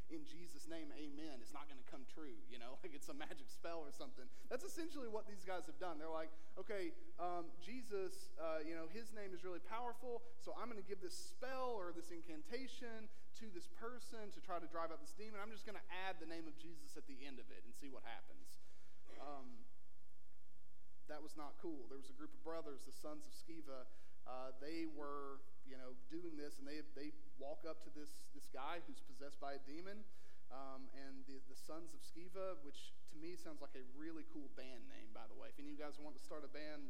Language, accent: English, American